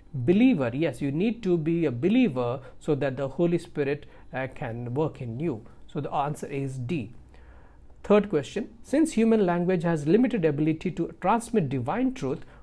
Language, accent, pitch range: English, Indian, 135-205 Hz